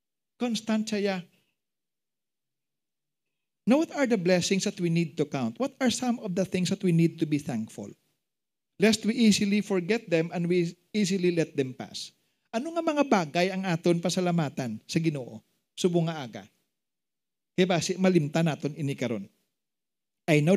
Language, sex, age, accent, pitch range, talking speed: English, male, 40-59, Filipino, 155-205 Hz, 150 wpm